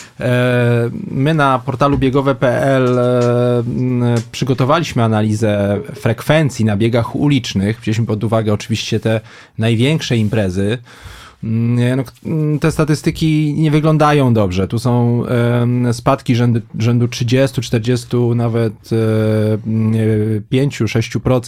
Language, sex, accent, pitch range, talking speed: Polish, male, native, 115-135 Hz, 85 wpm